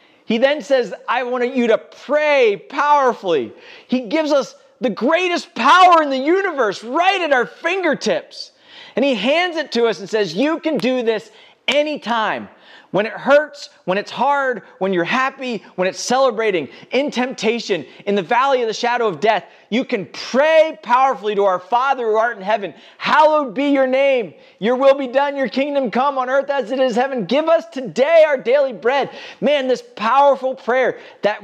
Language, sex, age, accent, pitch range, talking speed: English, male, 30-49, American, 190-270 Hz, 185 wpm